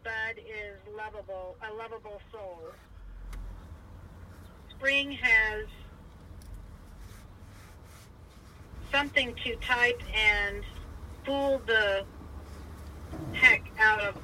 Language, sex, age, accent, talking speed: English, female, 50-69, American, 70 wpm